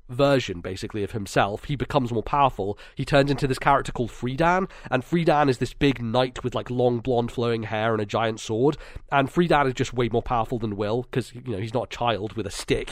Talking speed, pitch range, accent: 230 wpm, 110-140 Hz, British